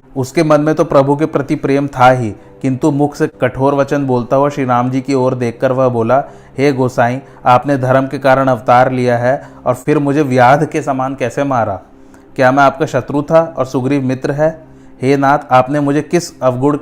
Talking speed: 205 wpm